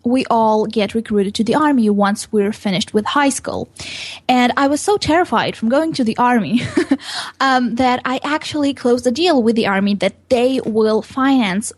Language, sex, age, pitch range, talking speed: English, female, 10-29, 210-255 Hz, 190 wpm